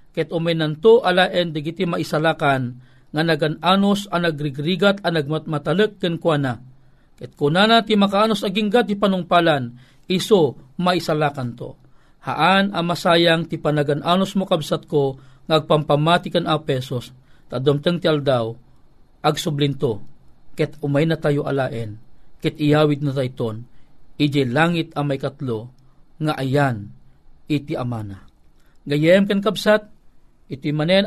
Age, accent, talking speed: 40-59, native, 115 wpm